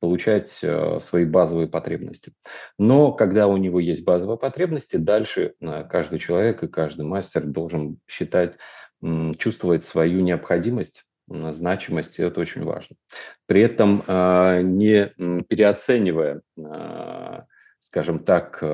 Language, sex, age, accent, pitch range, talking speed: Russian, male, 40-59, native, 80-100 Hz, 125 wpm